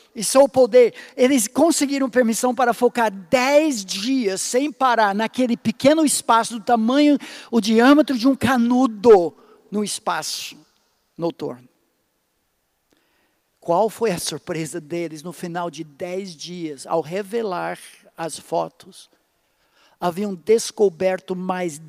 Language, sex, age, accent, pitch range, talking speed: Portuguese, male, 60-79, Brazilian, 200-290 Hz, 115 wpm